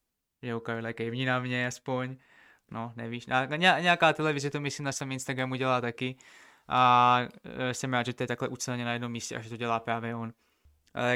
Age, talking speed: 20-39, 220 wpm